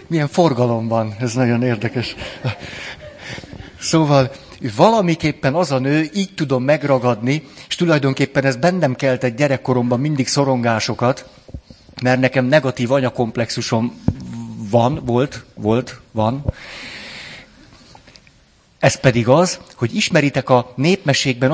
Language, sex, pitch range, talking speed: Hungarian, male, 125-155 Hz, 105 wpm